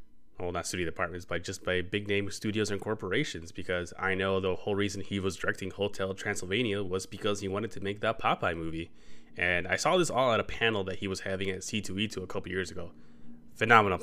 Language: English